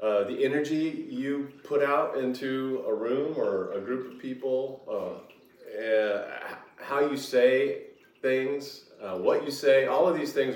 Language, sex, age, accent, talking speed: English, male, 30-49, American, 165 wpm